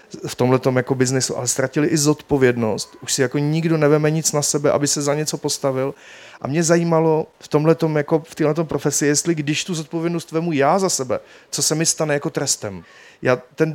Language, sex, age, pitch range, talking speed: Czech, male, 30-49, 125-155 Hz, 200 wpm